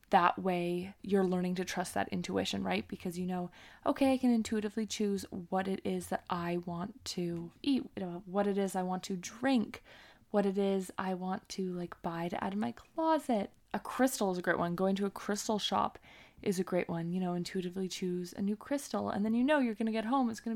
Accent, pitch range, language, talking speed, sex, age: American, 180-210 Hz, English, 230 wpm, female, 20-39